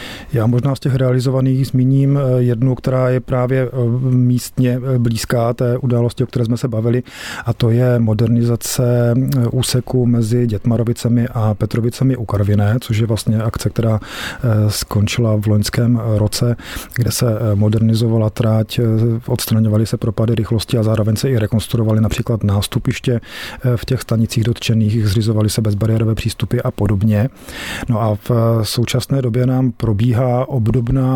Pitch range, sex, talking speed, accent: 110-120 Hz, male, 140 wpm, native